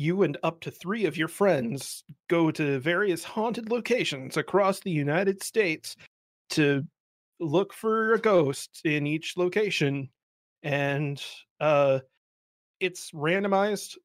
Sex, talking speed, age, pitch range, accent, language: male, 125 wpm, 30-49, 130-165 Hz, American, English